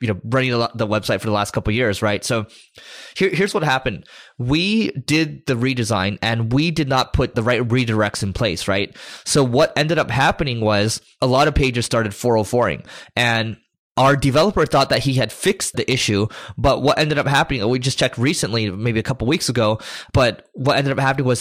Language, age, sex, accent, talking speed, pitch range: English, 20-39, male, American, 205 wpm, 110-135 Hz